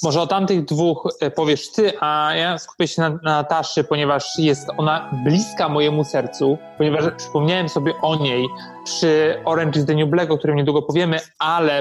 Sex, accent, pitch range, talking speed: male, native, 150-170 Hz, 180 wpm